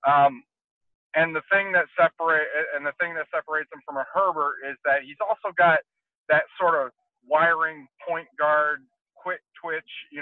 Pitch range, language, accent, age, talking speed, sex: 130-170 Hz, English, American, 40-59, 170 wpm, male